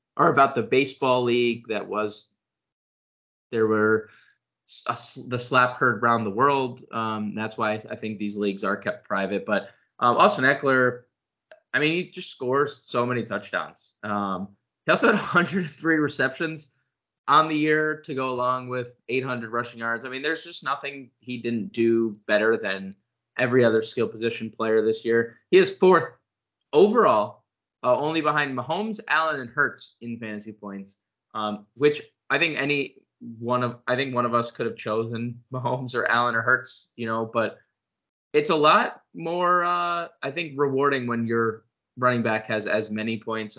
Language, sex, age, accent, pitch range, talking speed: English, male, 20-39, American, 110-145 Hz, 170 wpm